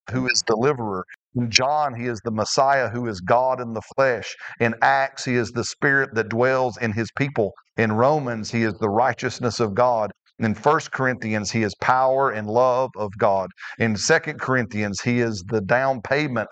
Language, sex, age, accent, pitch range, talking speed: English, male, 40-59, American, 115-140 Hz, 190 wpm